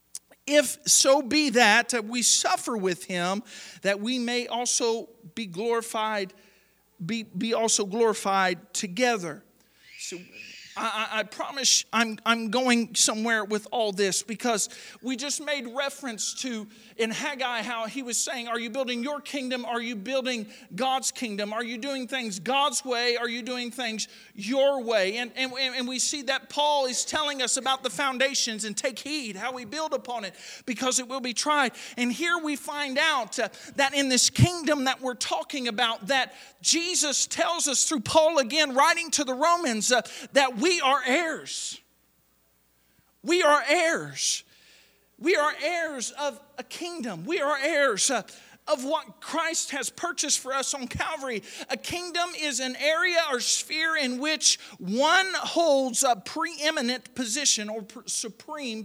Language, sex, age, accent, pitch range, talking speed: English, male, 40-59, American, 225-290 Hz, 160 wpm